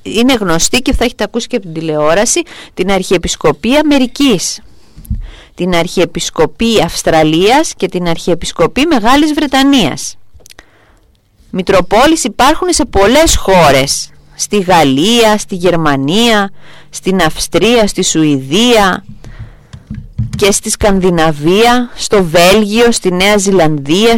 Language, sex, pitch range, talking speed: Greek, female, 165-235 Hz, 105 wpm